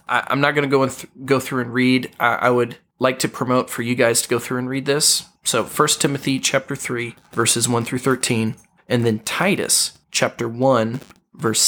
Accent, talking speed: American, 210 wpm